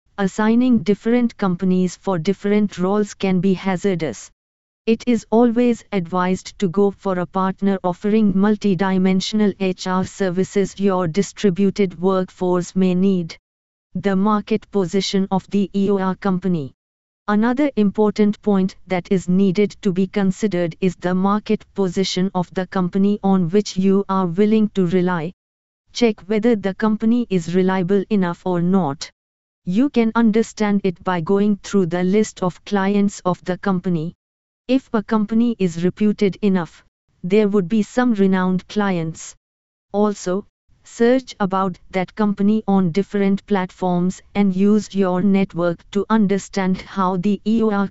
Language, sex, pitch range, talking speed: English, female, 185-205 Hz, 135 wpm